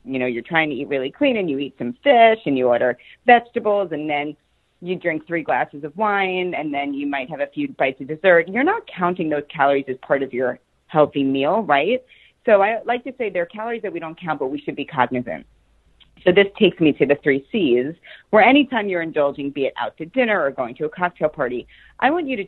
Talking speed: 245 wpm